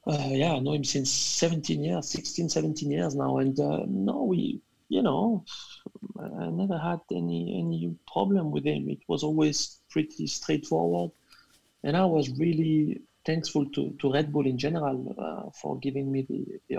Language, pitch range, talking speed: English, 130-150 Hz, 170 wpm